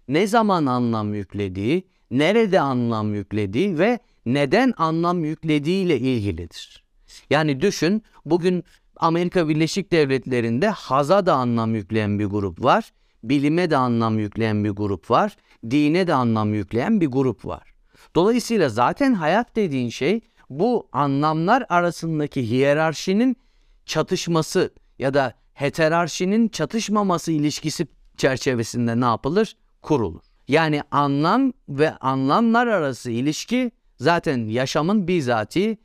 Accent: native